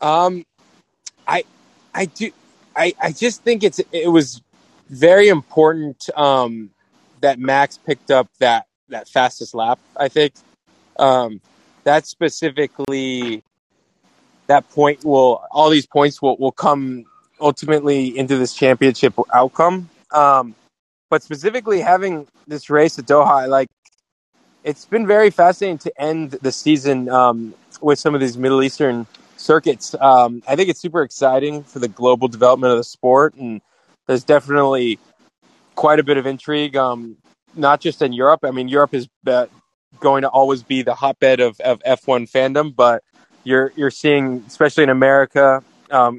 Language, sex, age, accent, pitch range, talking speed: English, male, 20-39, American, 125-150 Hz, 150 wpm